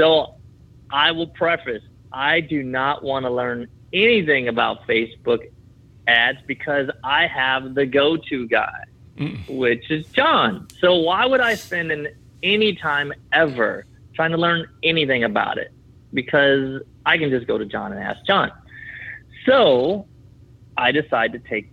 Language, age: English, 30-49